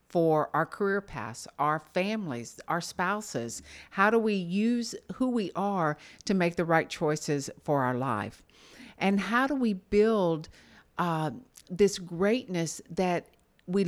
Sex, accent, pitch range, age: female, American, 150-200 Hz, 50-69